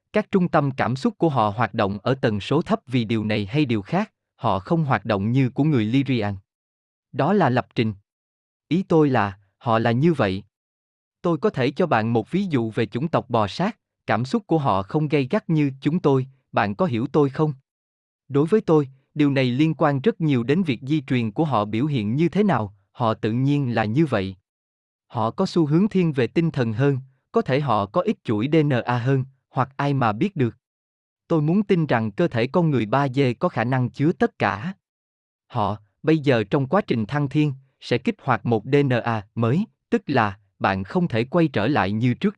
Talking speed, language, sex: 220 wpm, Vietnamese, male